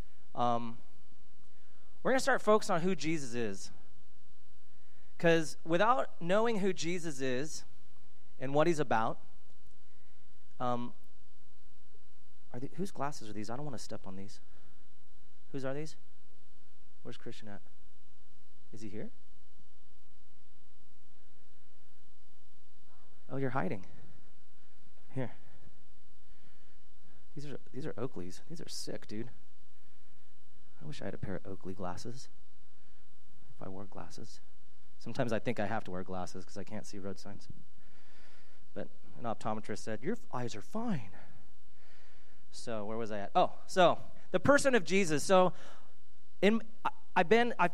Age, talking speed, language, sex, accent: 30-49, 130 wpm, English, male, American